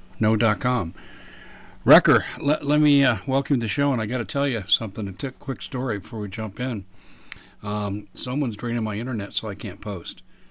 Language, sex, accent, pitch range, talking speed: English, male, American, 100-125 Hz, 200 wpm